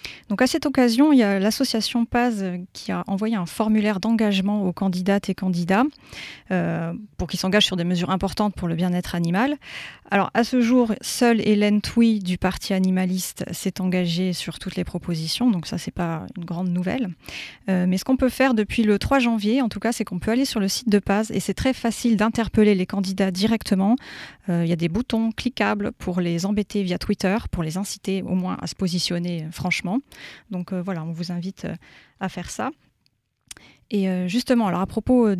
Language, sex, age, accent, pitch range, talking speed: French, female, 30-49, French, 185-225 Hz, 200 wpm